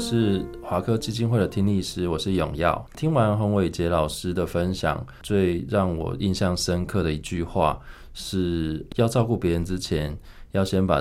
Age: 20-39